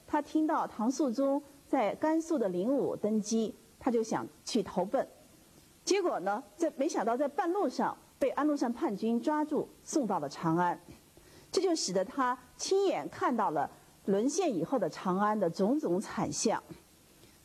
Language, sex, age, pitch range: Chinese, female, 50-69, 190-295 Hz